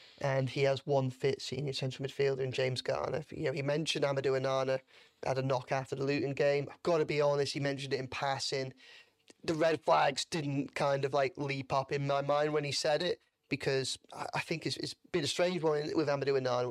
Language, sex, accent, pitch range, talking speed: English, male, British, 135-150 Hz, 225 wpm